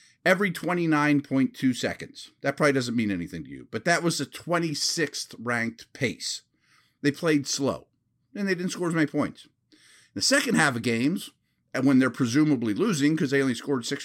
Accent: American